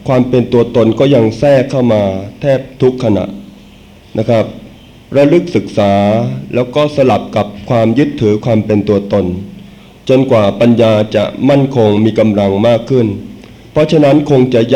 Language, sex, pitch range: Thai, male, 105-130 Hz